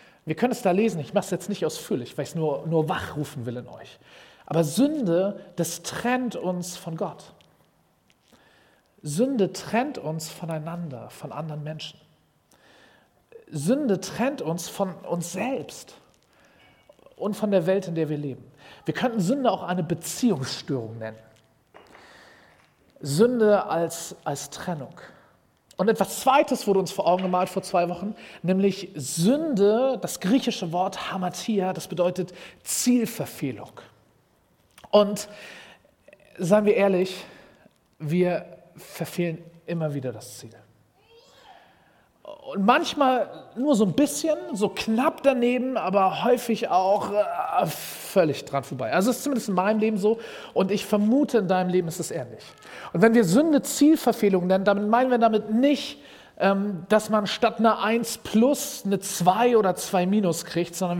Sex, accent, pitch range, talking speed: male, German, 170-230 Hz, 145 wpm